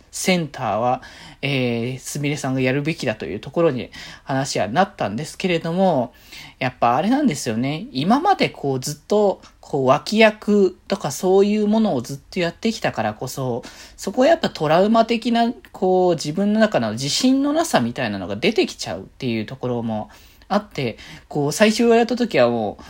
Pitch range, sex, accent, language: 125-210 Hz, male, native, Japanese